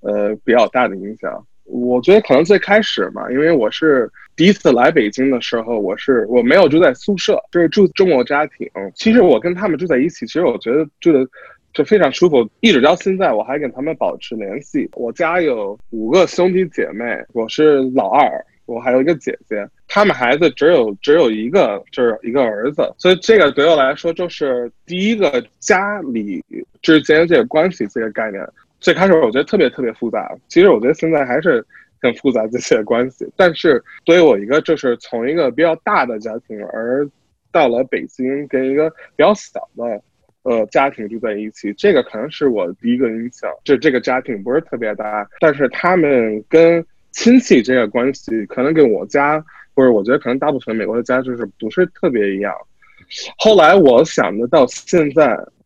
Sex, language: male, English